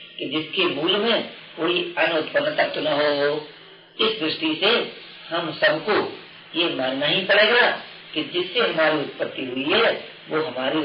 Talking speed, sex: 145 wpm, female